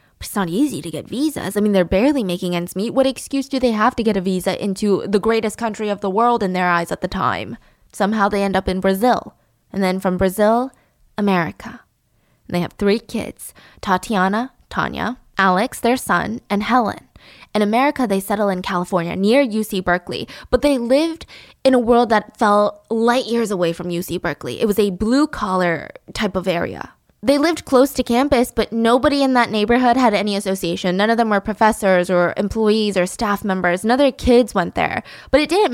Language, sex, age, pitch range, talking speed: English, female, 10-29, 190-255 Hz, 200 wpm